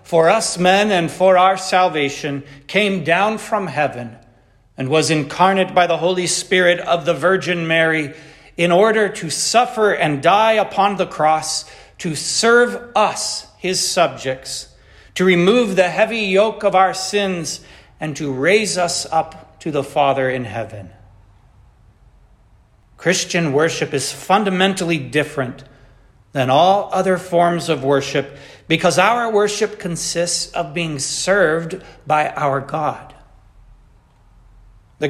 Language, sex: English, male